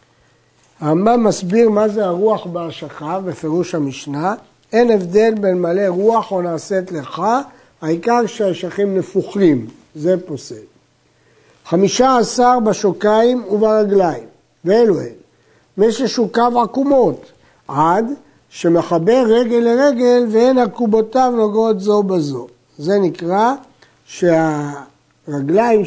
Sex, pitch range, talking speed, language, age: male, 170-225 Hz, 95 wpm, Hebrew, 60-79